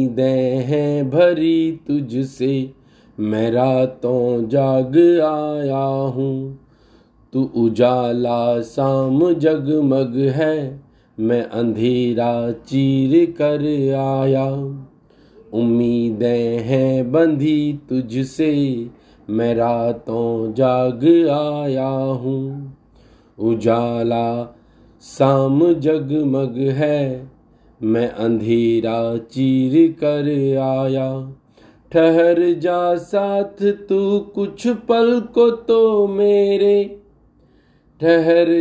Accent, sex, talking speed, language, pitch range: native, male, 70 wpm, Hindi, 125-180 Hz